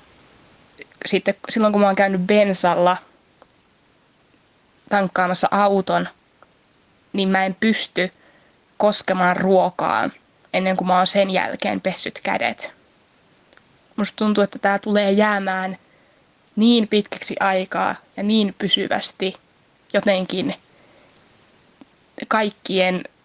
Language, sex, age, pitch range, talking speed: Finnish, female, 20-39, 185-205 Hz, 95 wpm